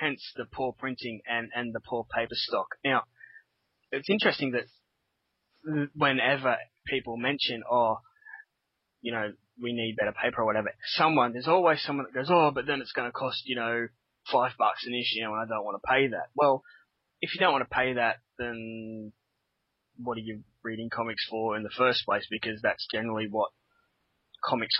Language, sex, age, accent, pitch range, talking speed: English, male, 20-39, Australian, 115-140 Hz, 185 wpm